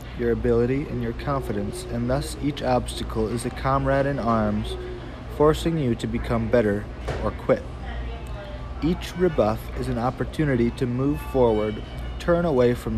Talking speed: 150 wpm